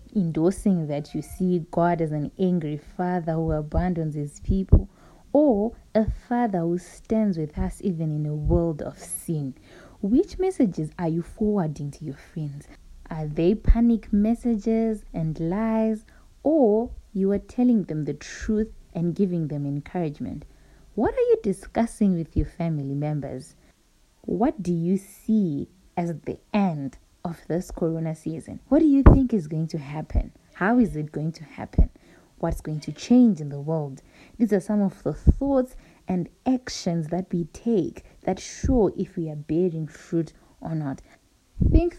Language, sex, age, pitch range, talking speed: English, female, 20-39, 155-210 Hz, 160 wpm